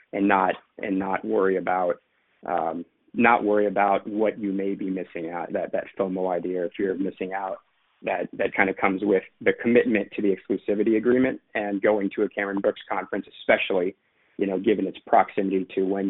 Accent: American